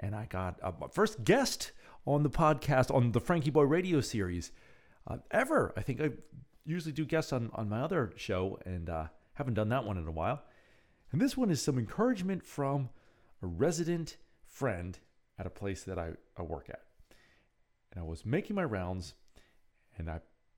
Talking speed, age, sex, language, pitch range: 185 wpm, 40-59, male, English, 95-155 Hz